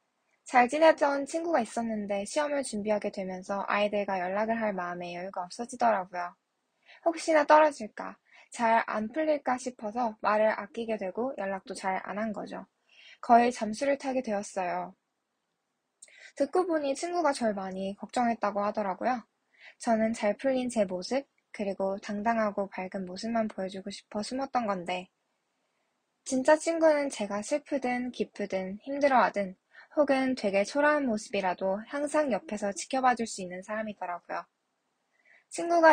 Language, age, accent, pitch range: Korean, 20-39, native, 200-265 Hz